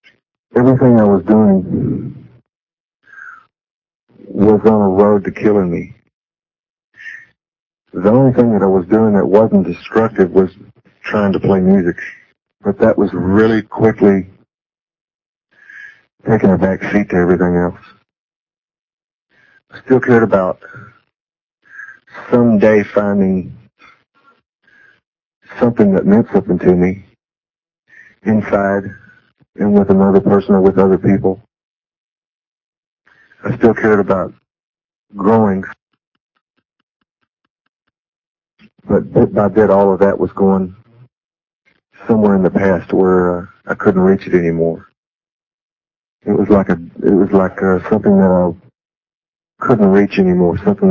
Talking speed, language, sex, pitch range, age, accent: 115 wpm, English, male, 95-105 Hz, 60-79, American